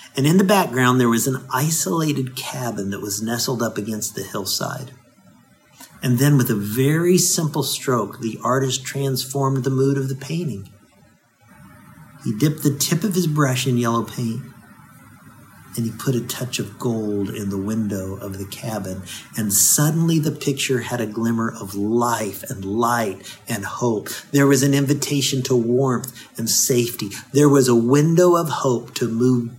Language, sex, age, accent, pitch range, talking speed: English, male, 50-69, American, 110-135 Hz, 170 wpm